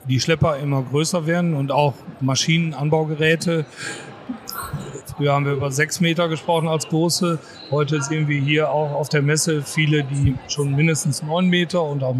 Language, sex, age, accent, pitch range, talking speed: German, male, 40-59, German, 150-170 Hz, 160 wpm